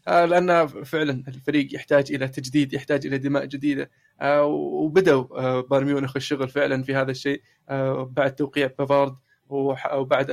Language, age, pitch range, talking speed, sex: Arabic, 20-39, 135-150 Hz, 150 wpm, male